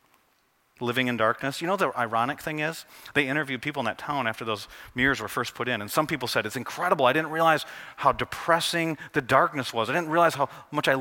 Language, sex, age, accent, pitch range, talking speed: English, male, 30-49, American, 115-150 Hz, 230 wpm